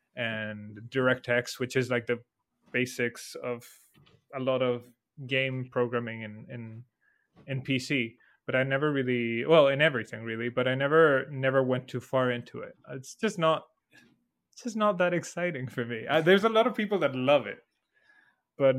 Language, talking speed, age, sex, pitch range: English, 170 wpm, 20-39, male, 125-150 Hz